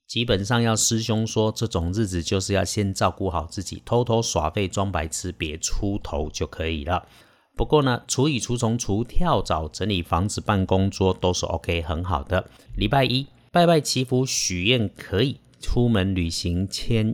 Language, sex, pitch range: Chinese, male, 95-120 Hz